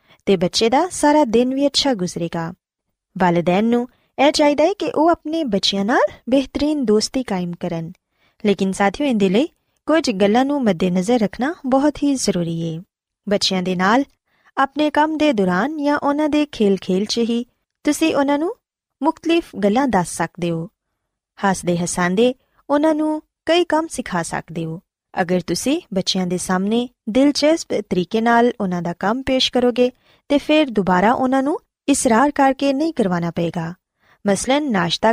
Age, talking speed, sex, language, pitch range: 20-39, 160 wpm, female, Punjabi, 185-285 Hz